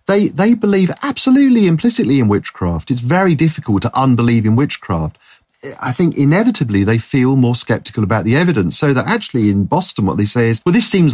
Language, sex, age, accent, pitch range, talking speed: English, male, 40-59, British, 115-155 Hz, 195 wpm